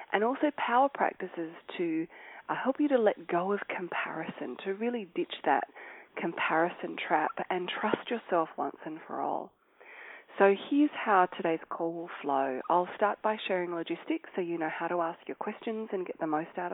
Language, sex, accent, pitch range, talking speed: English, female, Australian, 170-245 Hz, 185 wpm